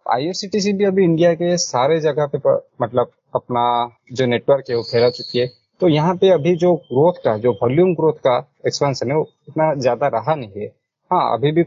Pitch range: 125-155 Hz